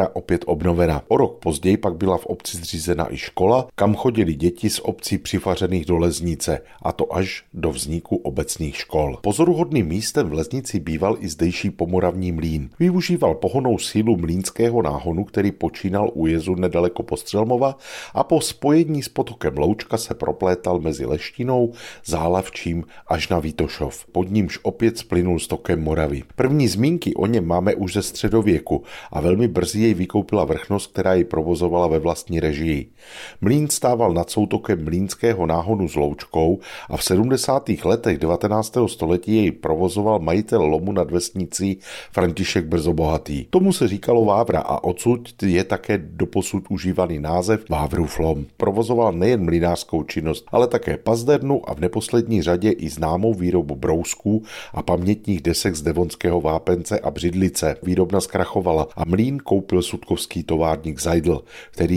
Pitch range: 85-110 Hz